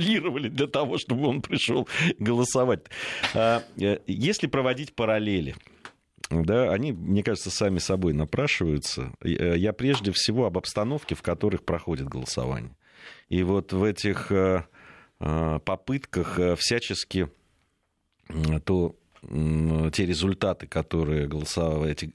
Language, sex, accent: Russian, male, native